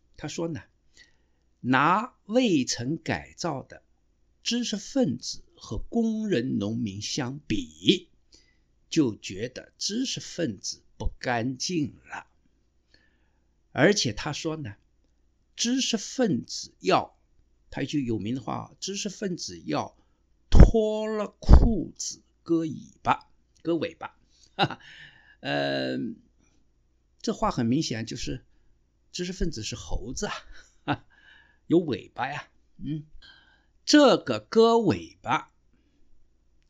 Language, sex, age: Chinese, male, 50-69